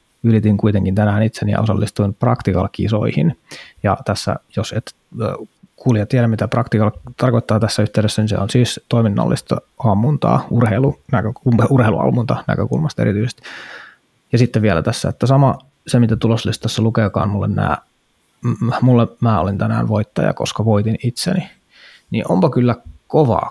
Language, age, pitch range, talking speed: Finnish, 20-39, 105-125 Hz, 135 wpm